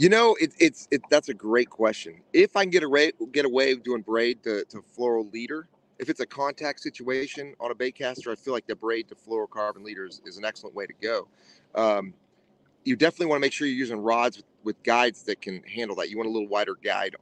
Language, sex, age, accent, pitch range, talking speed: English, male, 30-49, American, 110-145 Hz, 235 wpm